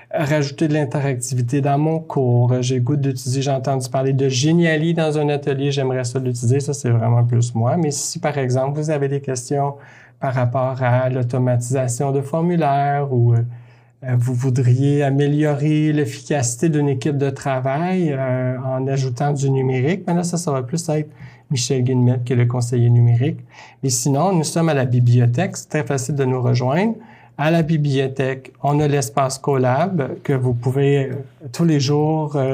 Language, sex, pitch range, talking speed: French, male, 125-155 Hz, 170 wpm